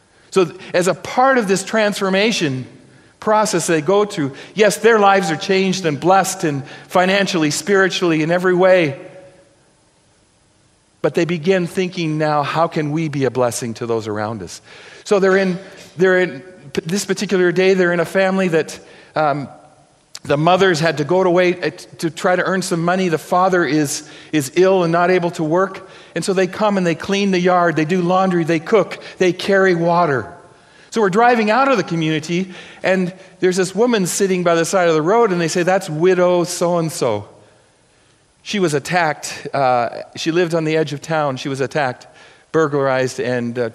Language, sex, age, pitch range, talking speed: English, male, 50-69, 145-185 Hz, 185 wpm